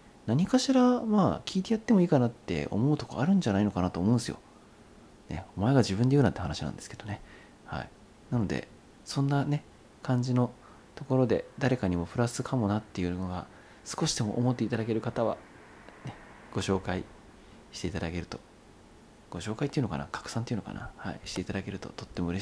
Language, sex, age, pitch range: Japanese, male, 40-59, 90-125 Hz